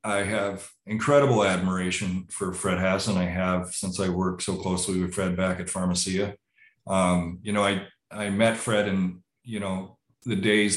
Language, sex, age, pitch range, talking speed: English, male, 40-59, 90-105 Hz, 175 wpm